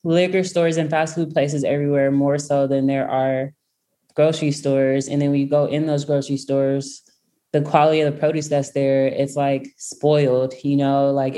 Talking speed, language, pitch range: 185 wpm, English, 145-170 Hz